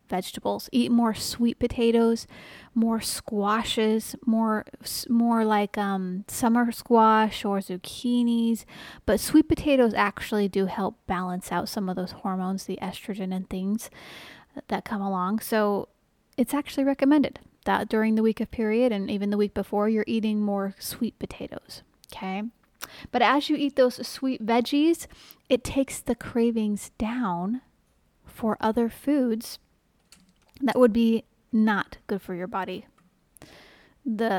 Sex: female